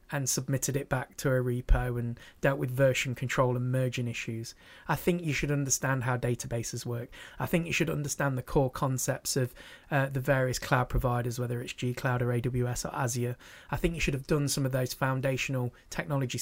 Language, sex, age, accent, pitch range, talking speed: English, male, 20-39, British, 130-145 Hz, 205 wpm